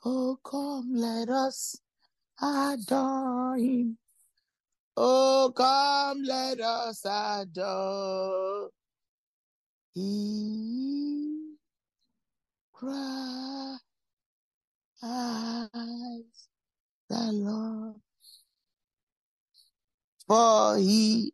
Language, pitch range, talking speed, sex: English, 225-275 Hz, 45 wpm, male